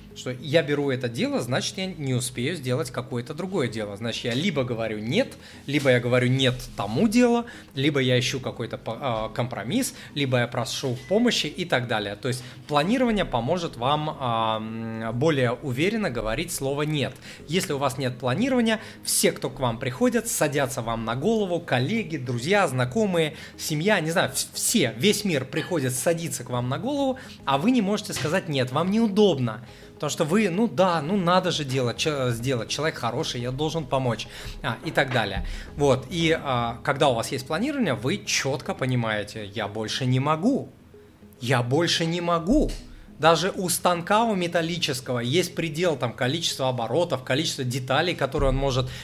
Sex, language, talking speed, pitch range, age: male, Russian, 165 wpm, 120-170 Hz, 30-49